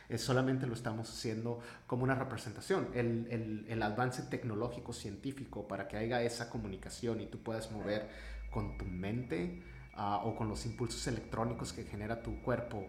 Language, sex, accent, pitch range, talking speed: Spanish, male, Mexican, 100-125 Hz, 150 wpm